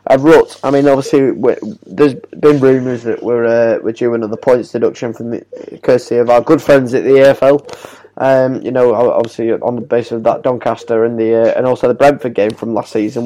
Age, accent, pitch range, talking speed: 10-29, British, 115-140 Hz, 215 wpm